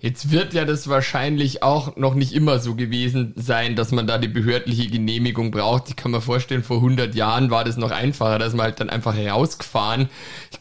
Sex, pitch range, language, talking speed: male, 120-145 Hz, German, 210 wpm